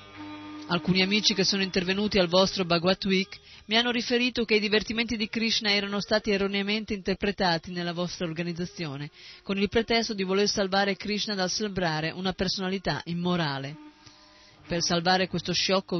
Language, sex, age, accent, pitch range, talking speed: Italian, female, 30-49, native, 155-200 Hz, 150 wpm